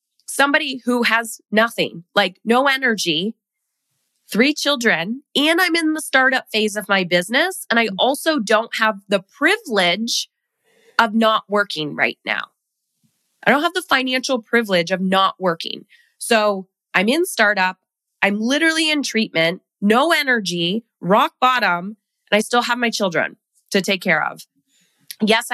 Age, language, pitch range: 20-39, English, 195-260 Hz